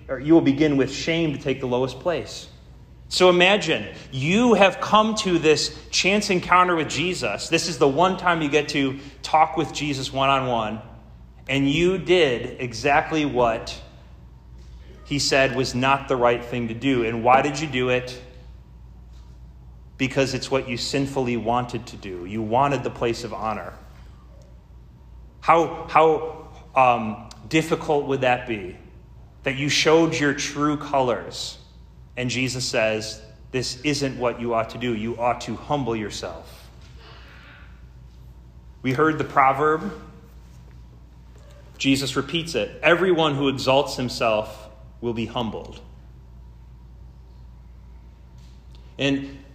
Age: 30-49